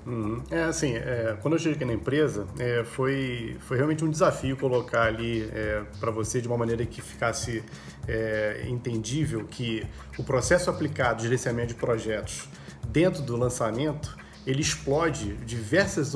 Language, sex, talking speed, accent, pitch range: Portuguese, male, 140 wpm, Brazilian, 120-155 Hz